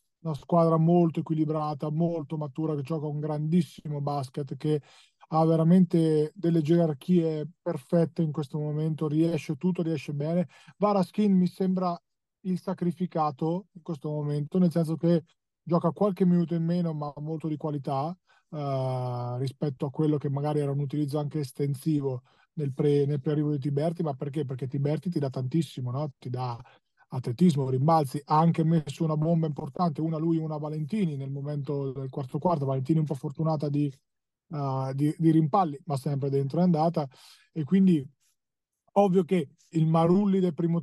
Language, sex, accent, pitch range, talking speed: Italian, male, native, 145-170 Hz, 160 wpm